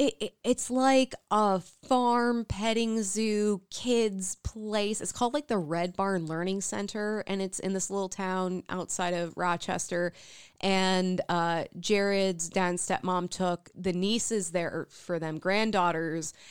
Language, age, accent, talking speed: English, 20-39, American, 140 wpm